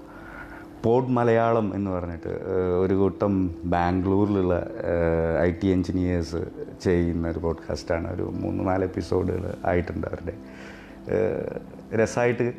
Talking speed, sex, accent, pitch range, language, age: 95 wpm, male, native, 85-105 Hz, Malayalam, 30-49